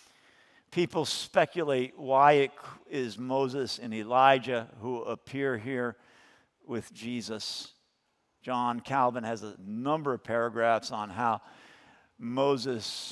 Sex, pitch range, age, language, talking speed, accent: male, 110-130 Hz, 50-69, English, 105 wpm, American